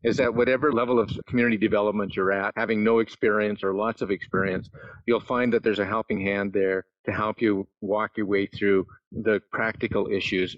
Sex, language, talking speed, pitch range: male, English, 195 wpm, 100-115 Hz